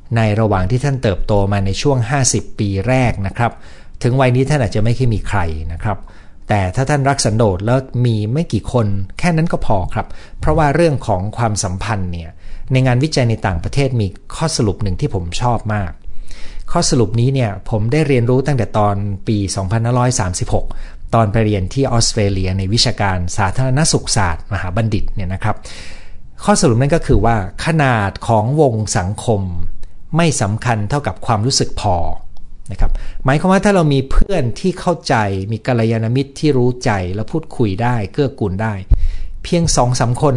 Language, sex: Thai, male